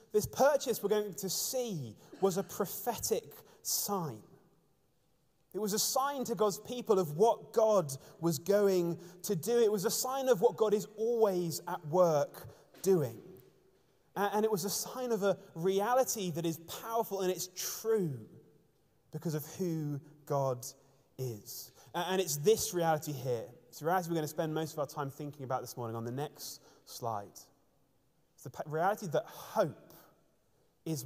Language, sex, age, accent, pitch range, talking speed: English, male, 20-39, British, 140-200 Hz, 165 wpm